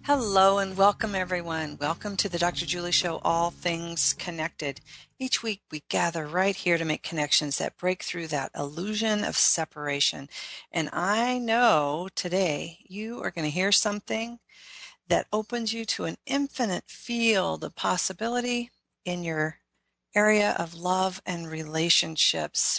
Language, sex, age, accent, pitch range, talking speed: English, female, 40-59, American, 165-215 Hz, 145 wpm